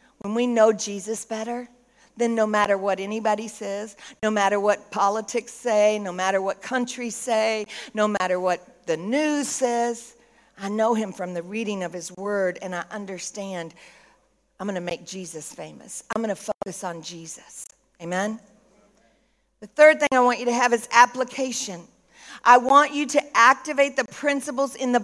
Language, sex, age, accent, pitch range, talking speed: English, female, 50-69, American, 215-285 Hz, 175 wpm